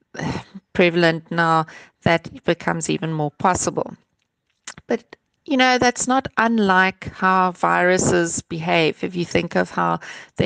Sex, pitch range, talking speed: female, 160-185 Hz, 130 wpm